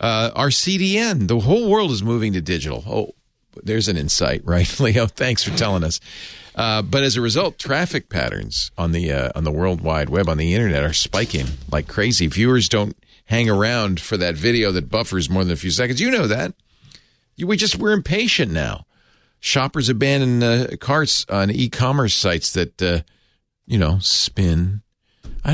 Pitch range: 90-125 Hz